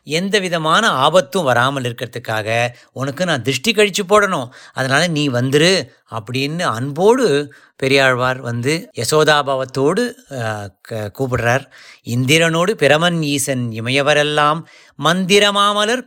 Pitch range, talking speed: 130-195 Hz, 95 wpm